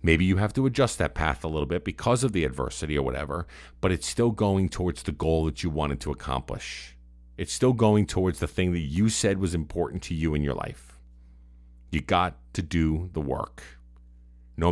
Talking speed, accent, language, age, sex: 210 wpm, American, English, 50-69, male